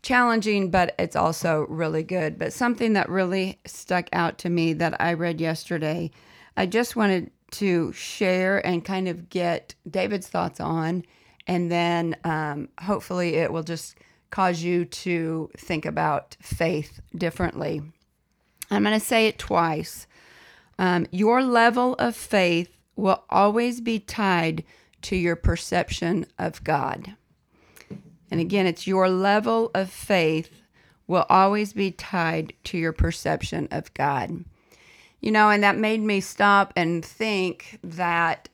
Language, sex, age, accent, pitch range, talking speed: English, female, 40-59, American, 165-200 Hz, 140 wpm